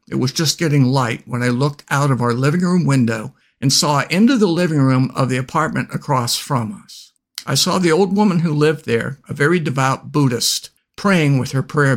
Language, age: English, 60-79